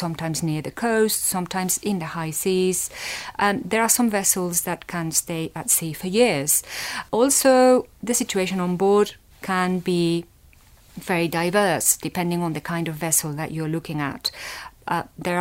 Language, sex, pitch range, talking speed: English, female, 165-205 Hz, 165 wpm